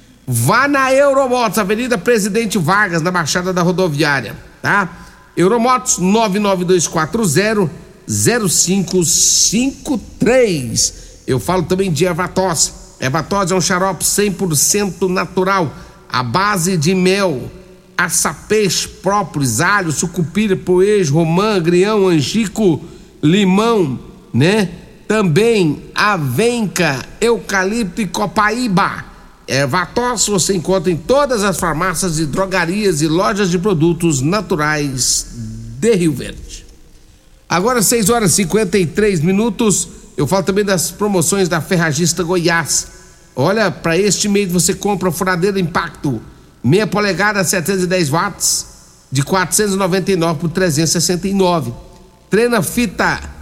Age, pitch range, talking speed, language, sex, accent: 60-79, 170-205 Hz, 105 wpm, Portuguese, male, Brazilian